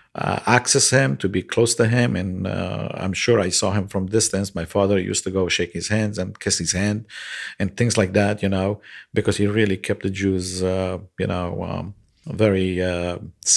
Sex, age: male, 50-69